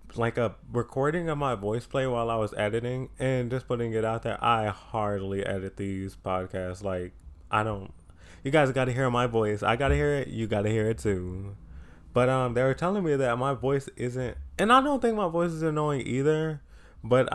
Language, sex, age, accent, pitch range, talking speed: English, male, 20-39, American, 105-135 Hz, 210 wpm